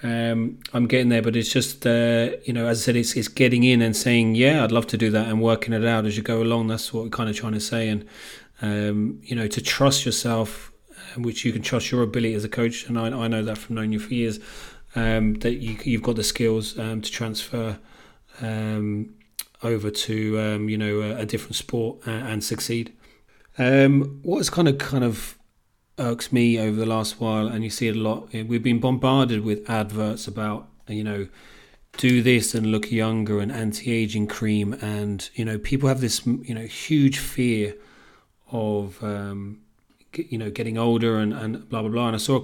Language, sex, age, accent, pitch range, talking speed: English, male, 30-49, British, 110-120 Hz, 210 wpm